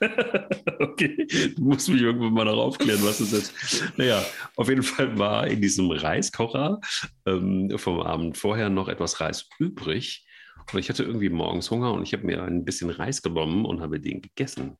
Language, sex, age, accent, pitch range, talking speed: German, male, 40-59, German, 80-110 Hz, 185 wpm